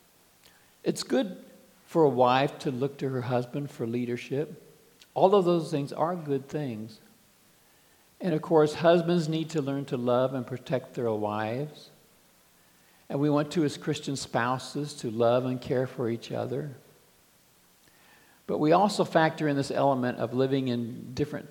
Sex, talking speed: male, 160 wpm